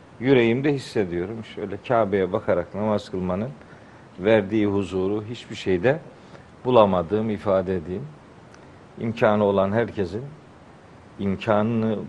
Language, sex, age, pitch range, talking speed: Turkish, male, 50-69, 100-125 Hz, 90 wpm